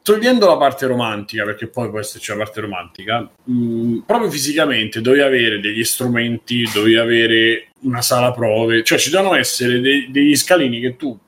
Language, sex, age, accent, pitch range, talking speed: Italian, male, 30-49, native, 115-145 Hz, 160 wpm